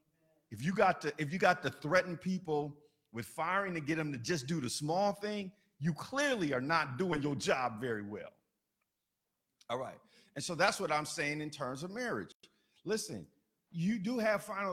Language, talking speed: English, 190 wpm